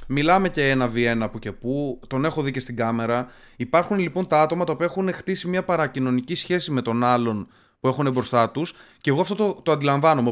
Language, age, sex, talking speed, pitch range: Greek, 20-39, male, 210 wpm, 130-175 Hz